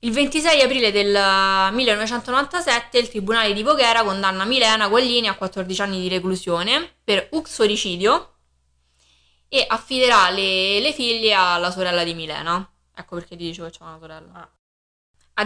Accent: native